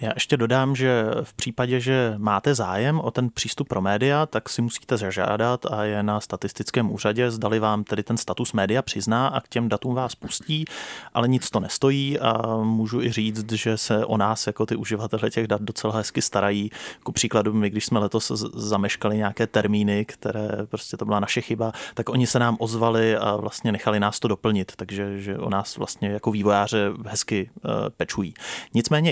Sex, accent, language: male, native, Czech